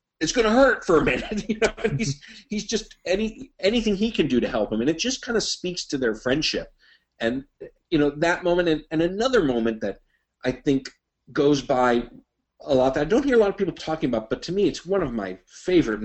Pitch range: 110-175 Hz